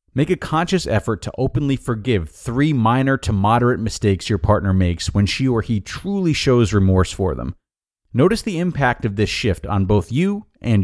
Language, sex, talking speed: English, male, 190 wpm